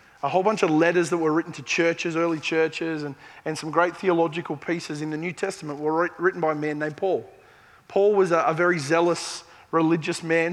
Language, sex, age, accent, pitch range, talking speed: English, male, 20-39, Australian, 160-190 Hz, 210 wpm